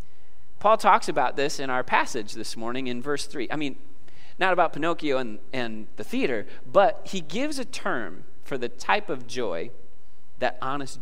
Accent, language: American, English